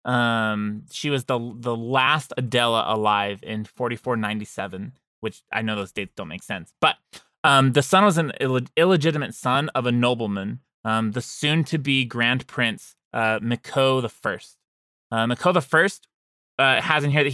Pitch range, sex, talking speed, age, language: 110-135 Hz, male, 175 wpm, 20-39, English